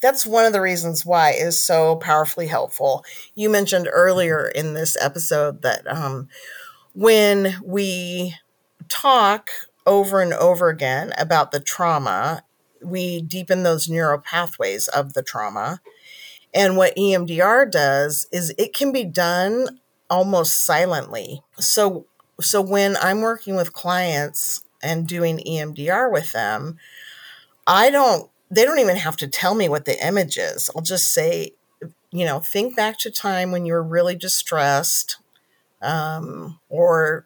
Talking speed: 140 wpm